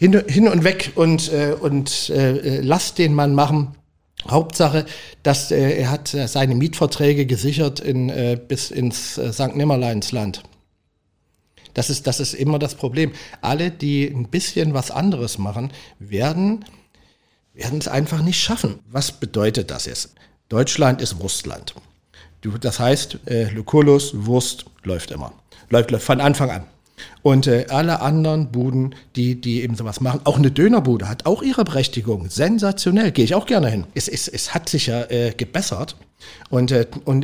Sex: male